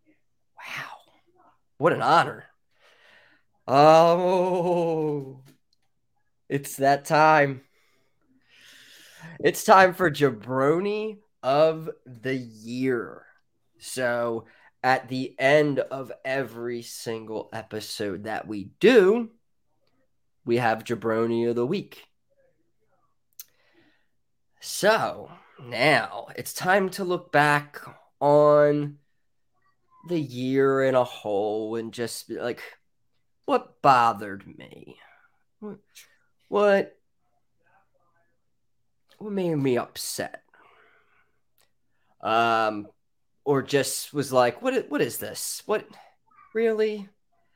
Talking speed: 85 wpm